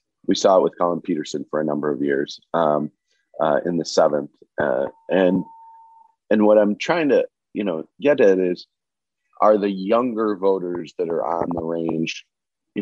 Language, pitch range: English, 85-110 Hz